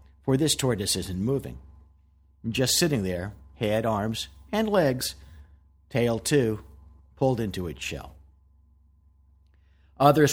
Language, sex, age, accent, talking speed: English, male, 50-69, American, 110 wpm